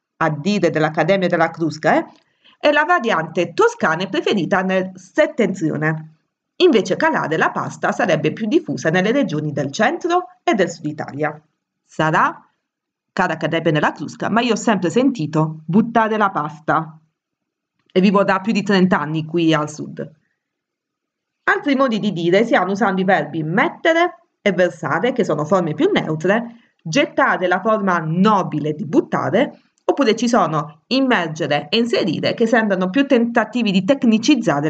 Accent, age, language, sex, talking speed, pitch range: native, 30-49, Italian, female, 150 wpm, 160-230 Hz